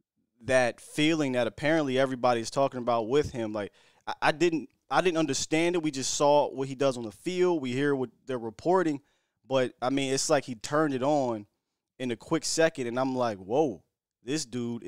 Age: 20-39